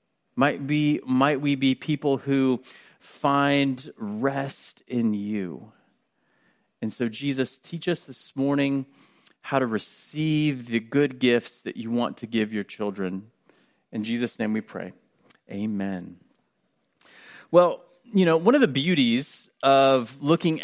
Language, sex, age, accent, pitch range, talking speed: English, male, 30-49, American, 130-180 Hz, 135 wpm